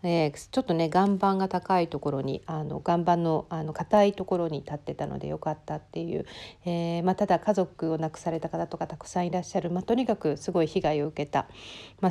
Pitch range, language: 165-215 Hz, Japanese